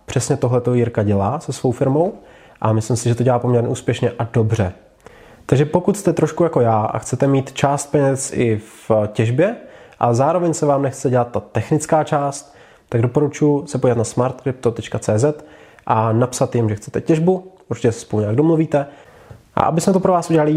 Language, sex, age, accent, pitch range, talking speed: Czech, male, 20-39, native, 115-150 Hz, 190 wpm